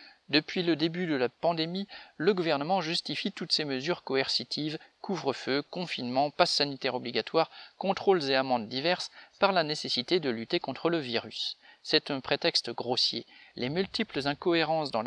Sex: male